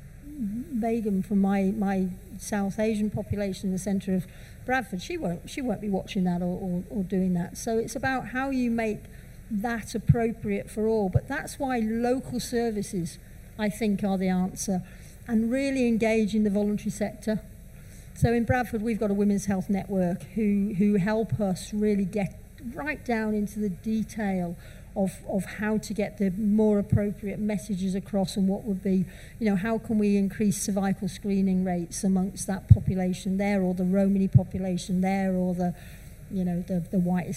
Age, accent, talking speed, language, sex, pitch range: 50-69, British, 175 wpm, English, female, 185-215 Hz